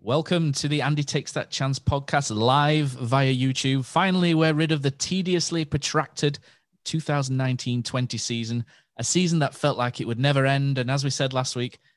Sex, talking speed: male, 175 wpm